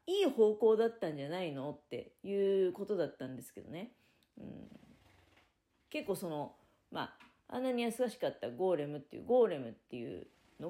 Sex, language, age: female, Japanese, 40-59